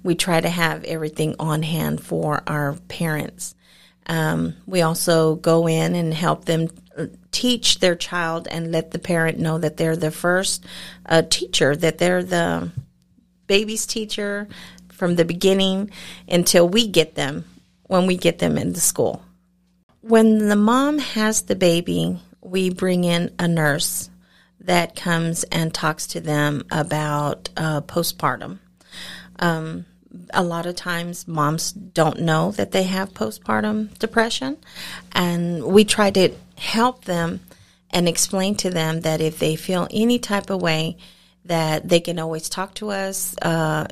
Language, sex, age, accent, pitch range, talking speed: English, female, 40-59, American, 155-185 Hz, 150 wpm